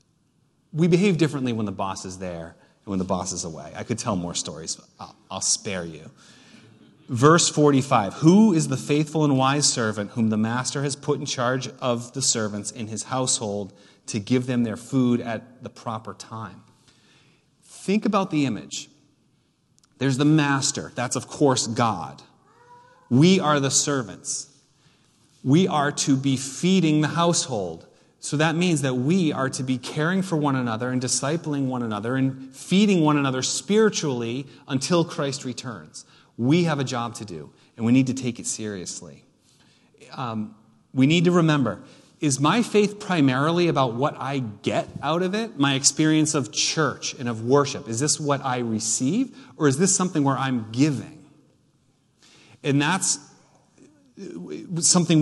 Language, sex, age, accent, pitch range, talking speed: English, male, 30-49, American, 125-155 Hz, 165 wpm